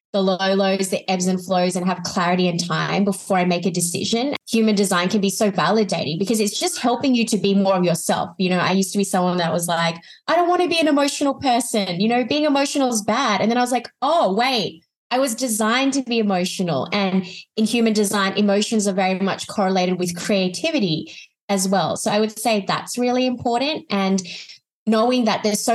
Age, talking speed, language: 20-39, 220 wpm, English